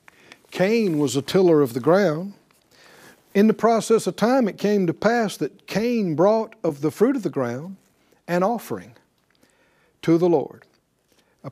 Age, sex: 60-79, male